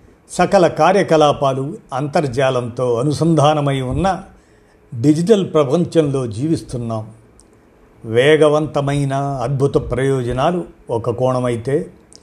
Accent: native